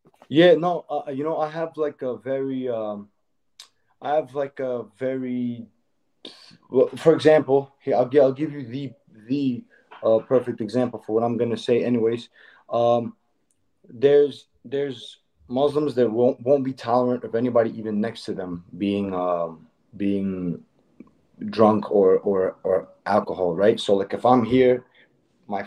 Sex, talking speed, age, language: male, 160 wpm, 20-39, English